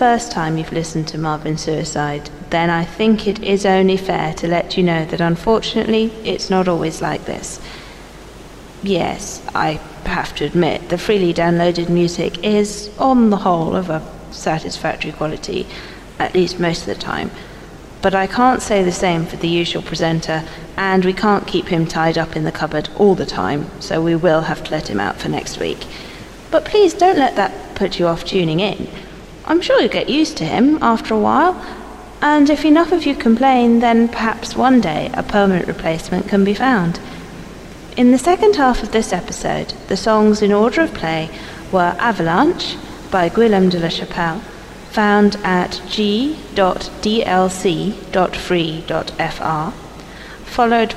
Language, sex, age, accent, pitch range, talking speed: English, female, 40-59, British, 170-230 Hz, 165 wpm